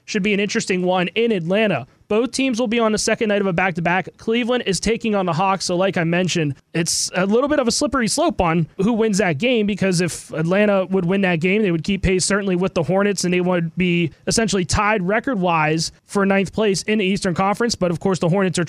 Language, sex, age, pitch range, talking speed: English, male, 20-39, 170-205 Hz, 245 wpm